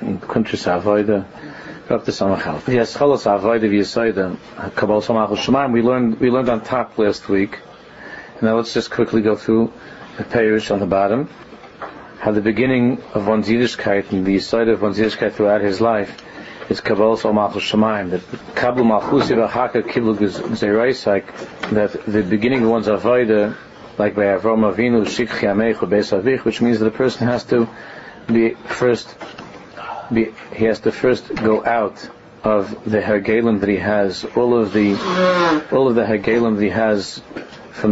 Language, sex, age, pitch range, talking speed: English, male, 50-69, 105-115 Hz, 160 wpm